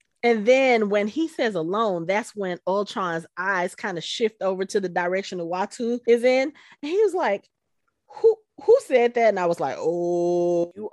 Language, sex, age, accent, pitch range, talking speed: English, female, 30-49, American, 180-280 Hz, 185 wpm